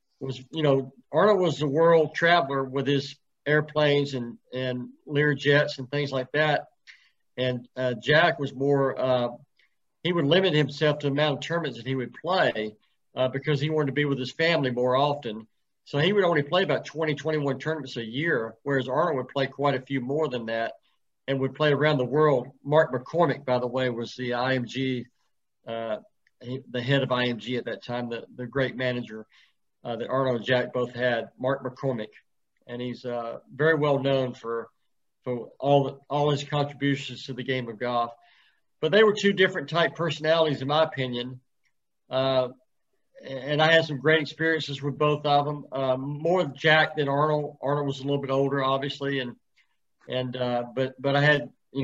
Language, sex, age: English, male, 50-69